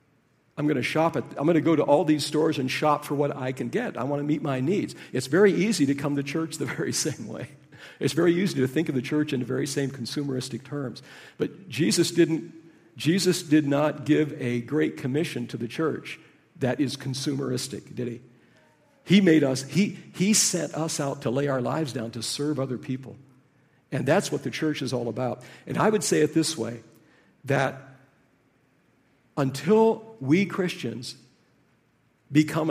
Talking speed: 195 wpm